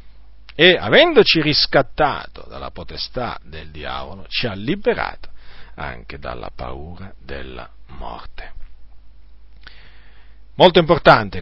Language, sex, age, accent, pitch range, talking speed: Italian, male, 40-59, native, 85-140 Hz, 90 wpm